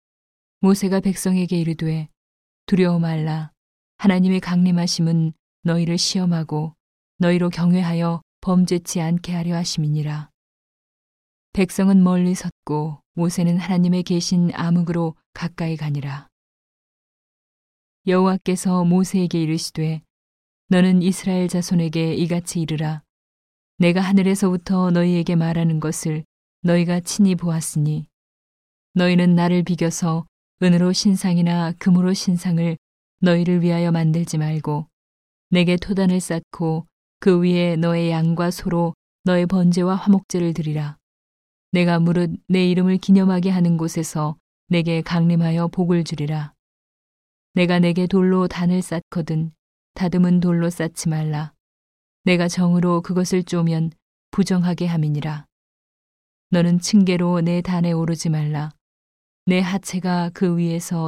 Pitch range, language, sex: 160-180 Hz, Korean, female